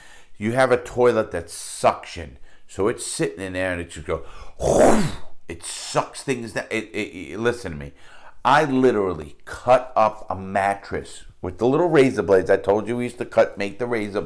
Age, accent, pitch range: 50-69, American, 95-125 Hz